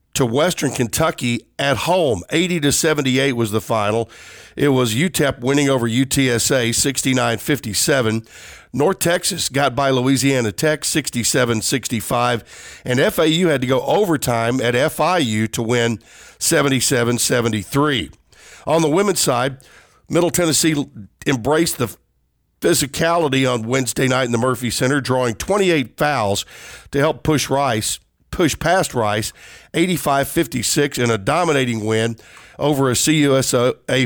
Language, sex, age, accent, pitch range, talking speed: English, male, 50-69, American, 120-150 Hz, 120 wpm